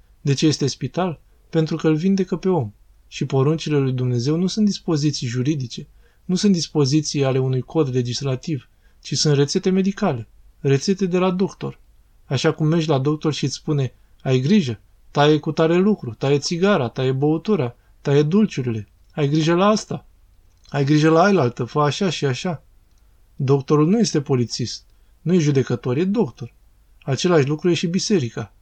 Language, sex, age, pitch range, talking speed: Romanian, male, 20-39, 120-160 Hz, 165 wpm